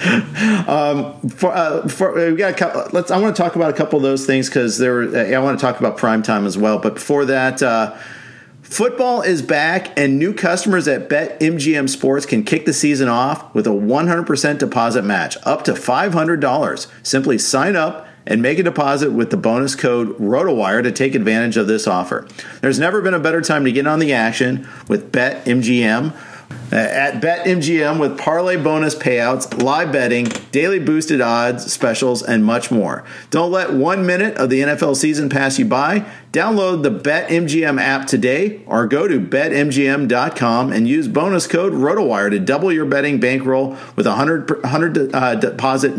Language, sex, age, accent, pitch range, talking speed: English, male, 50-69, American, 125-175 Hz, 185 wpm